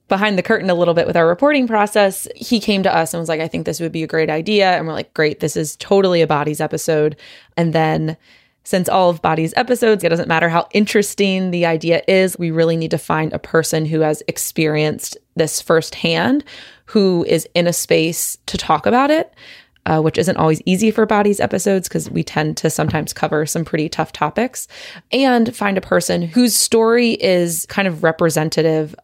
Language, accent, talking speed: English, American, 205 wpm